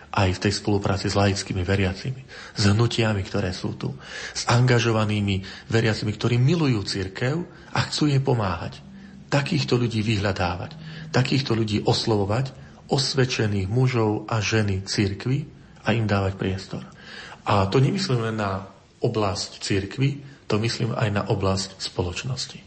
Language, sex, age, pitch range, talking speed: Slovak, male, 40-59, 100-120 Hz, 130 wpm